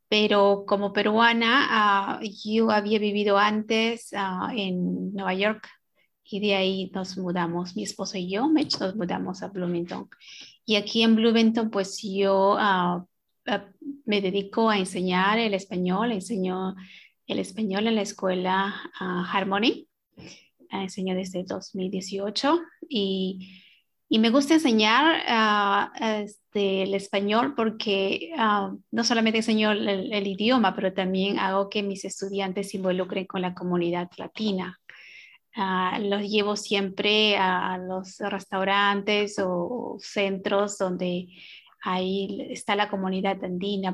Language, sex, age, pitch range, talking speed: English, female, 30-49, 190-215 Hz, 130 wpm